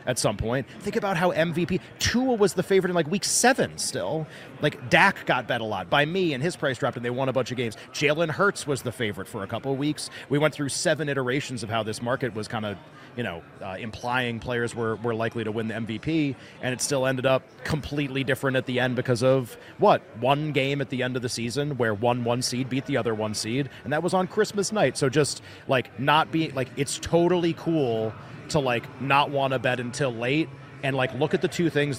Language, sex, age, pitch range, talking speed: English, male, 30-49, 125-155 Hz, 240 wpm